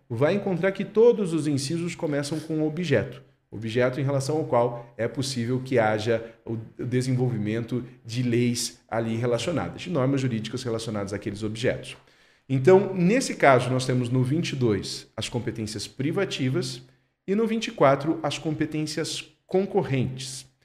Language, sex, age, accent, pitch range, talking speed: Portuguese, male, 40-59, Brazilian, 115-155 Hz, 135 wpm